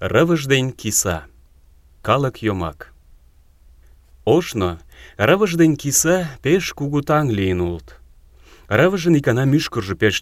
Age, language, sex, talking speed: 30-49, Russian, male, 80 wpm